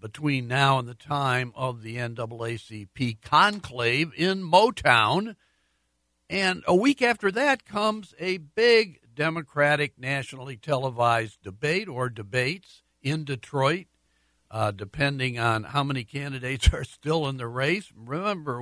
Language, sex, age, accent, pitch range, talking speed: English, male, 60-79, American, 115-150 Hz, 125 wpm